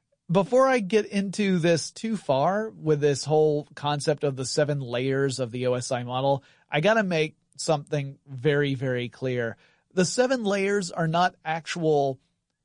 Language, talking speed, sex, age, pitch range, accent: English, 155 wpm, male, 30-49, 135-180 Hz, American